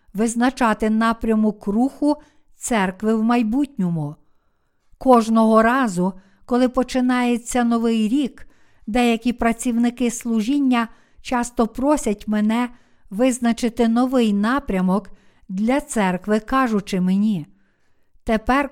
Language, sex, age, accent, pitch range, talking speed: Ukrainian, female, 50-69, native, 215-250 Hz, 85 wpm